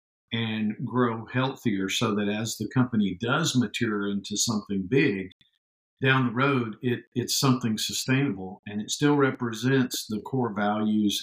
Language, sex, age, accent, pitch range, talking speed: English, male, 50-69, American, 100-125 Hz, 145 wpm